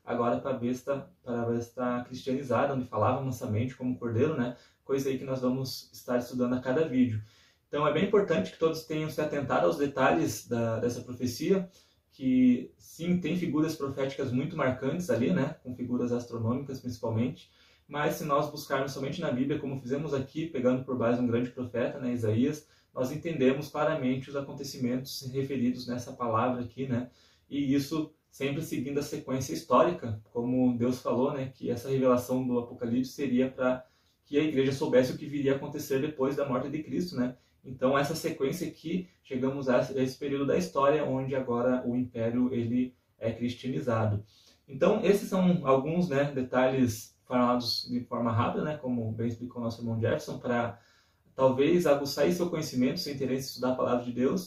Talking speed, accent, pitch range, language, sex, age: 175 wpm, Brazilian, 125-140 Hz, Portuguese, male, 20-39